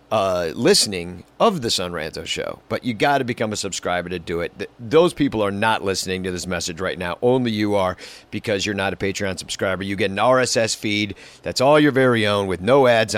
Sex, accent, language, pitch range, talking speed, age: male, American, English, 95-130 Hz, 220 wpm, 50-69